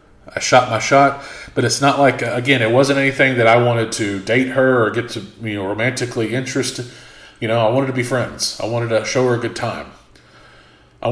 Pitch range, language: 120-140 Hz, English